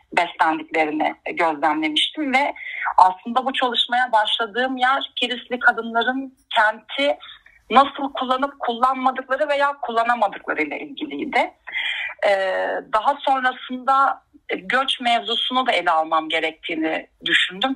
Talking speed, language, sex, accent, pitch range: 90 wpm, Turkish, female, native, 200-260 Hz